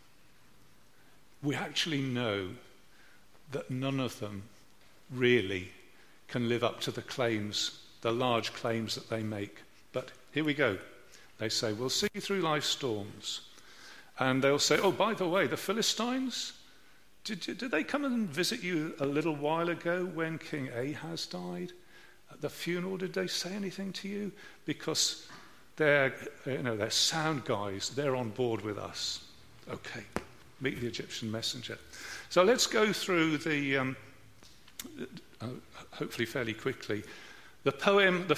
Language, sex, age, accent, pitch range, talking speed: English, male, 50-69, British, 115-175 Hz, 145 wpm